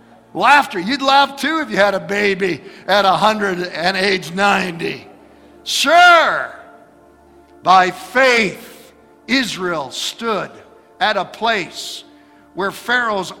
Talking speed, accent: 110 wpm, American